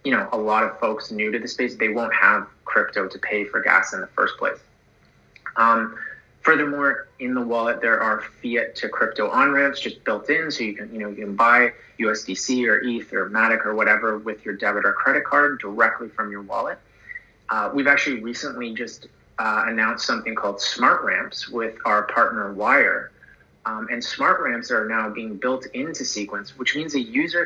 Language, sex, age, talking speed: English, male, 30-49, 195 wpm